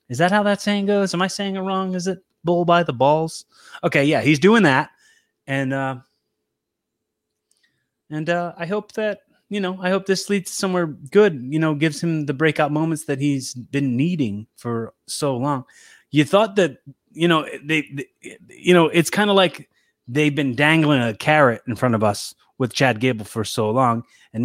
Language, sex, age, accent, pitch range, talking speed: English, male, 30-49, American, 115-155 Hz, 195 wpm